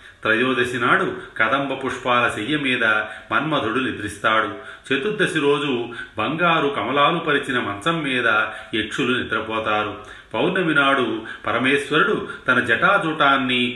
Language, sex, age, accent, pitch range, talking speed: Telugu, male, 30-49, native, 115-165 Hz, 95 wpm